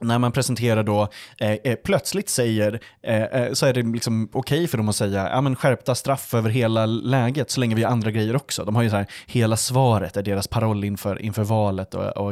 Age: 20-39